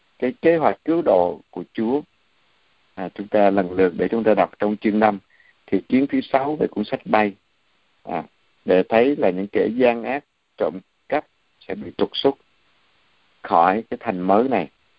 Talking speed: 185 wpm